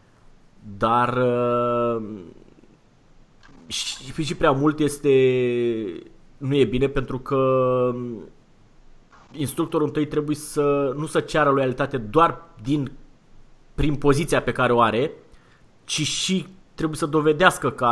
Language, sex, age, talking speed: Romanian, male, 30-49, 115 wpm